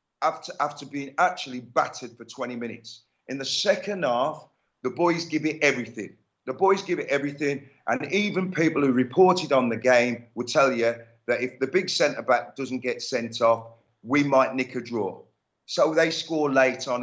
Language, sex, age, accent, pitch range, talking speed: English, male, 40-59, British, 120-160 Hz, 185 wpm